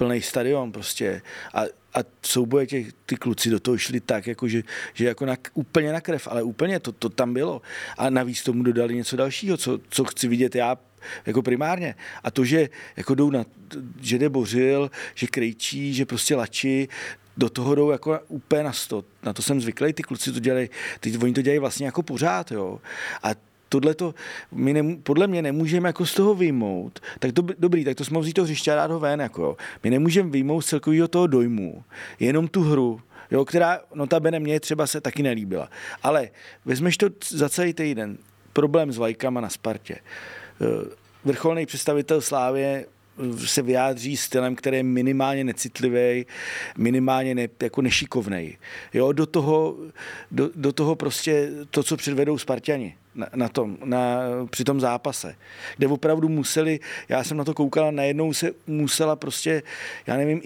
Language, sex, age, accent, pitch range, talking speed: Czech, male, 40-59, native, 125-155 Hz, 170 wpm